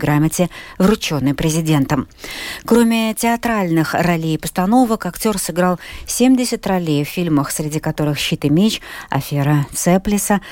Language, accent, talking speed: Russian, native, 120 wpm